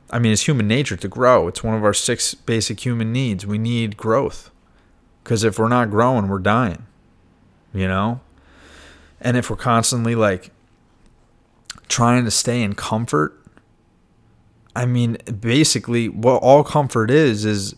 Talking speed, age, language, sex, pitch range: 150 wpm, 20-39, English, male, 95-120 Hz